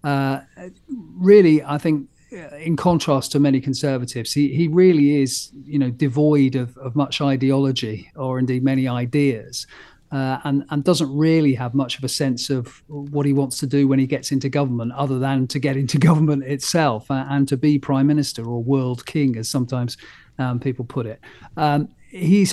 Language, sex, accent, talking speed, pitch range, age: English, male, British, 180 wpm, 130-150 Hz, 40-59